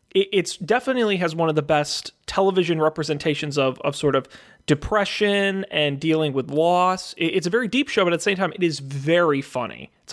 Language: English